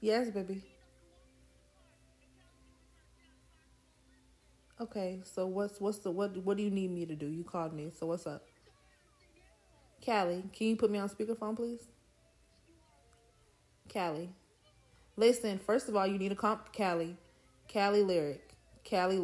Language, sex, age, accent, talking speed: English, female, 30-49, American, 135 wpm